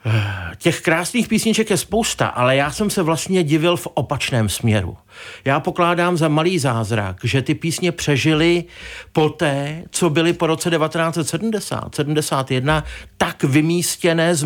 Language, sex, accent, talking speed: Czech, male, native, 135 wpm